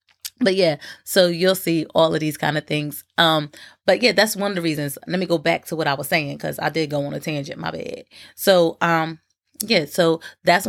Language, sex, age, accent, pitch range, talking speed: English, female, 30-49, American, 150-175 Hz, 235 wpm